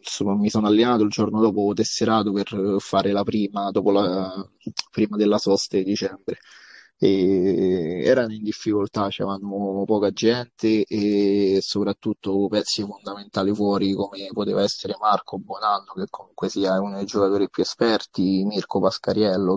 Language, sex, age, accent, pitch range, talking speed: Italian, male, 20-39, native, 100-110 Hz, 130 wpm